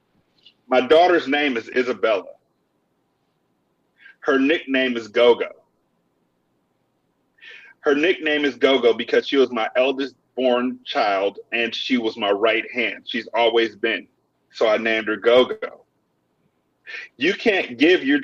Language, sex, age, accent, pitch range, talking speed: English, male, 40-59, American, 125-190 Hz, 125 wpm